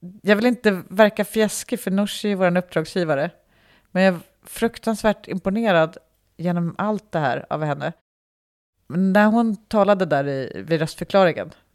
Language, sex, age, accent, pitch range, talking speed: Swedish, female, 30-49, native, 170-215 Hz, 145 wpm